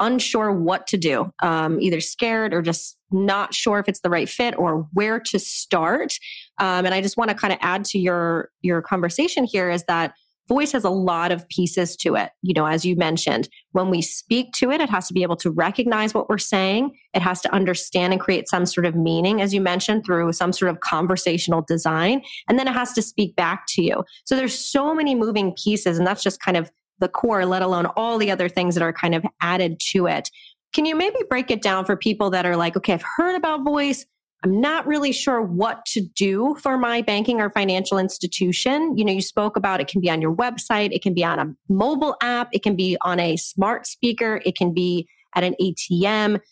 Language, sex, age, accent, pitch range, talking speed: English, female, 30-49, American, 175-225 Hz, 230 wpm